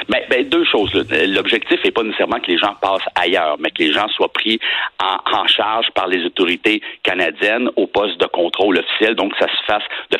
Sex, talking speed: male, 220 wpm